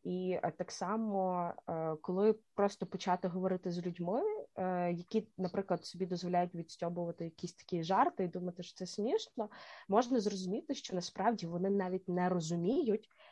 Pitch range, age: 175-210 Hz, 20-39